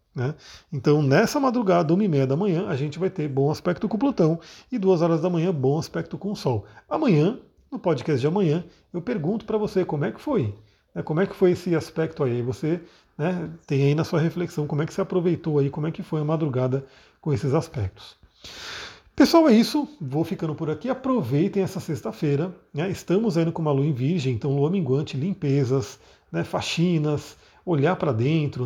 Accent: Brazilian